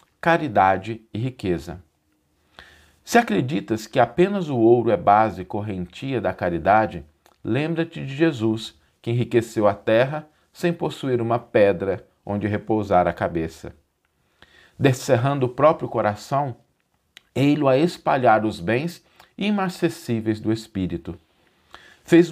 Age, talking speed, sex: 50-69, 115 wpm, male